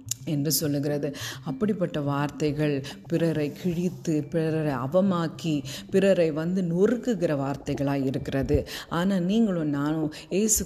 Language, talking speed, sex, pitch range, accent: Tamil, 95 wpm, female, 150-185 Hz, native